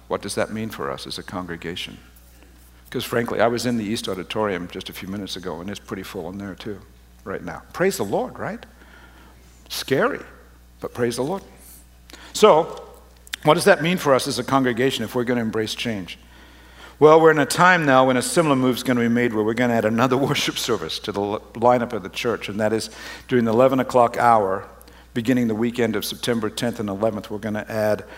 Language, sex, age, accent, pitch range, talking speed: English, male, 60-79, American, 95-130 Hz, 225 wpm